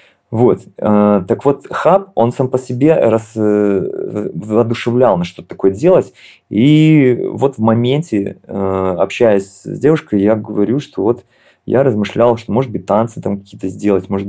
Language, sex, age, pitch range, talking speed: Russian, male, 30-49, 95-120 Hz, 145 wpm